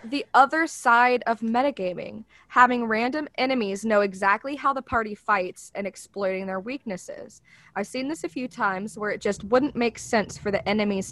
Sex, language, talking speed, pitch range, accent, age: female, English, 180 wpm, 200-275 Hz, American, 20-39